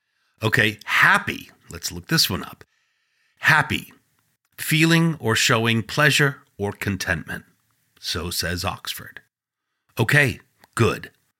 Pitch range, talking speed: 105-145 Hz, 100 wpm